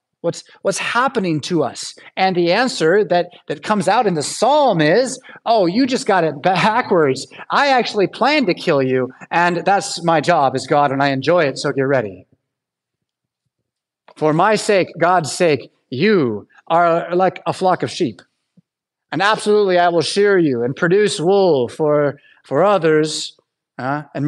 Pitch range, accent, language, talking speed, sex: 135-190 Hz, American, English, 165 wpm, male